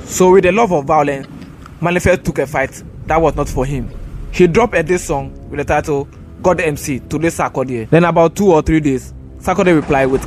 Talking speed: 210 wpm